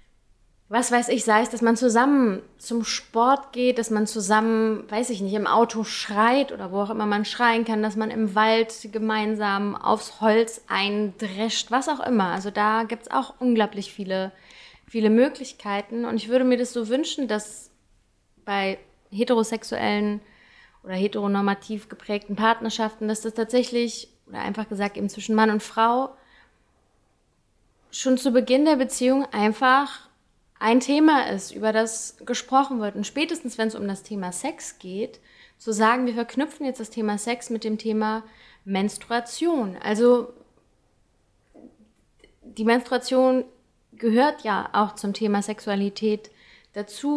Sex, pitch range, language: female, 210-245 Hz, German